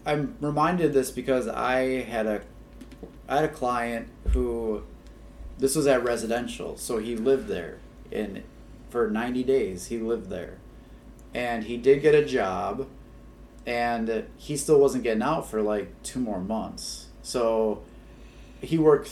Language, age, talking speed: English, 30-49, 150 wpm